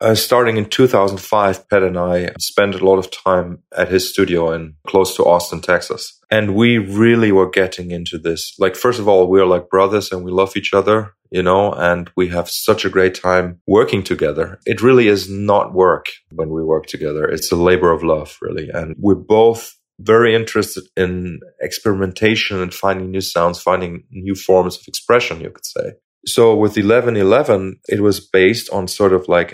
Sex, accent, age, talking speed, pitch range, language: male, German, 30-49, 195 wpm, 90-105 Hz, English